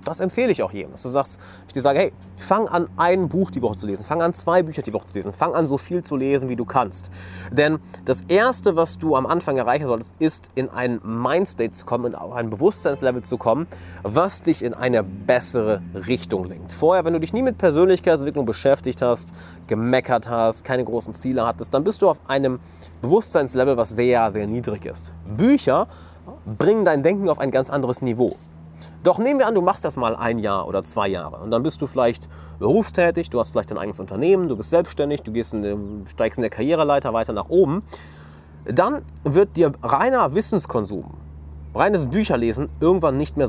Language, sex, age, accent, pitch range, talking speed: German, male, 30-49, German, 100-160 Hz, 200 wpm